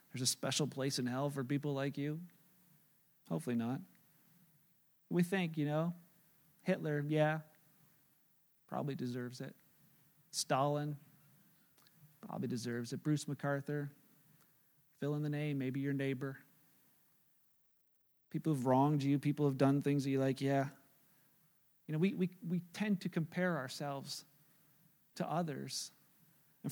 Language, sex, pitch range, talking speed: English, male, 145-195 Hz, 130 wpm